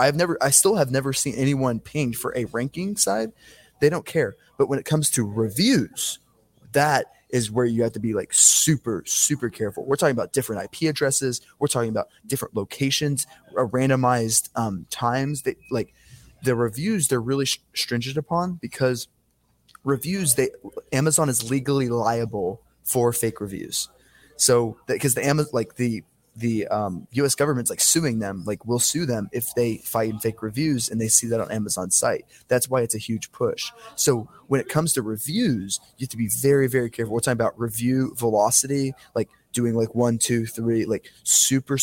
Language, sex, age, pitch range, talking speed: English, male, 20-39, 115-140 Hz, 185 wpm